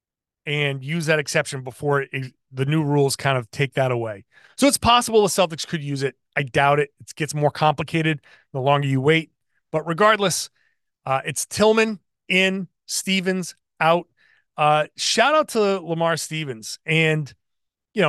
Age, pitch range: 30-49, 140-190 Hz